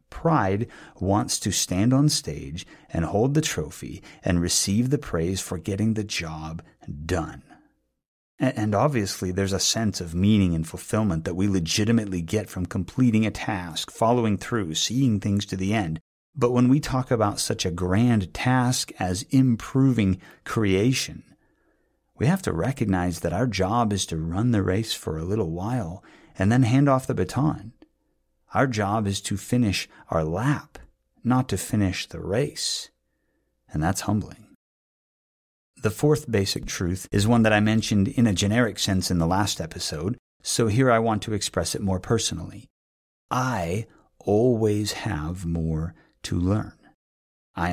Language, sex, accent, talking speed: English, male, American, 155 wpm